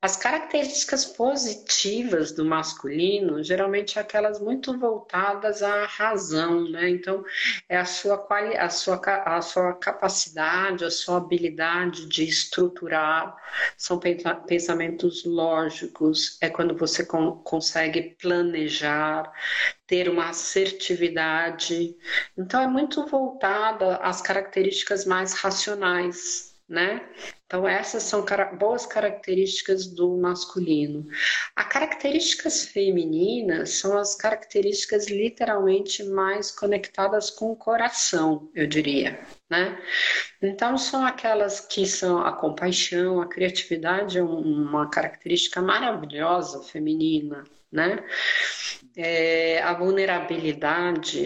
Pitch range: 165-215 Hz